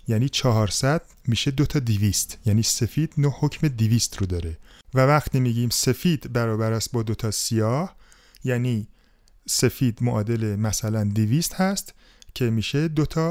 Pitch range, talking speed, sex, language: 110-150 Hz, 135 wpm, male, Persian